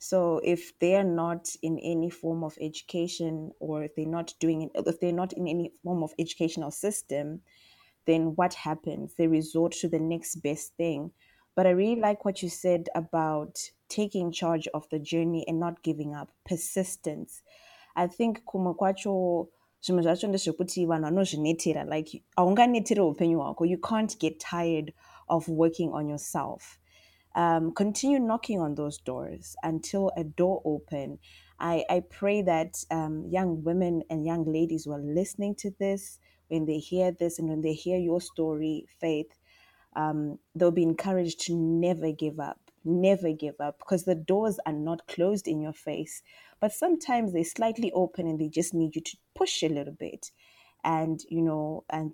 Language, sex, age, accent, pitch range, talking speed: English, female, 20-39, South African, 160-185 Hz, 160 wpm